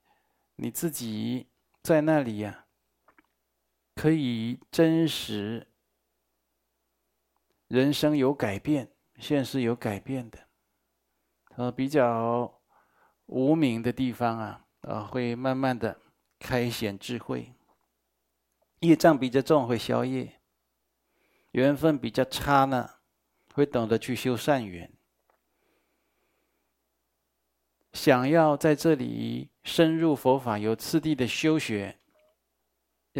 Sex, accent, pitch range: male, native, 115-145 Hz